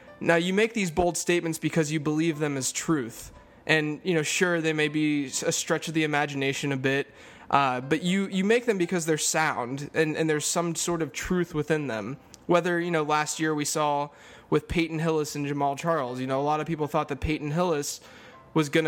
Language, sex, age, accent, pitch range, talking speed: English, male, 20-39, American, 150-175 Hz, 220 wpm